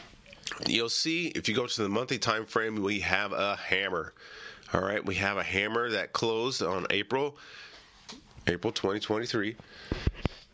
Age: 30-49